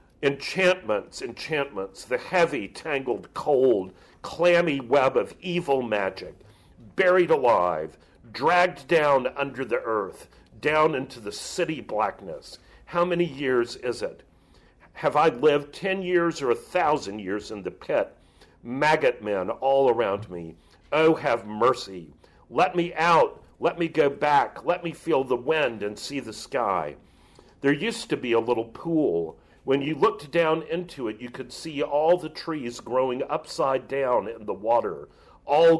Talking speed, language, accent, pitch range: 150 wpm, English, American, 120-170 Hz